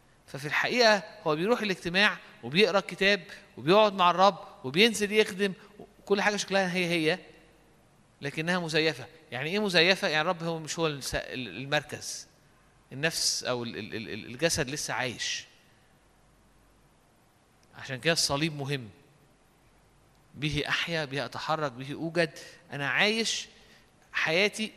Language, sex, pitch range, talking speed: Arabic, male, 150-200 Hz, 110 wpm